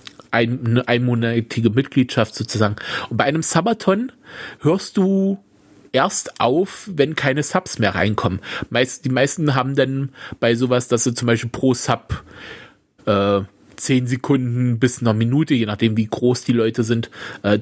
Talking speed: 145 wpm